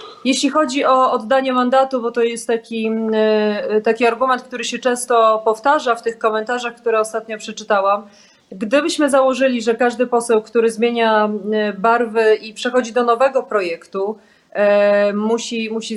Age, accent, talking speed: 30-49, native, 135 wpm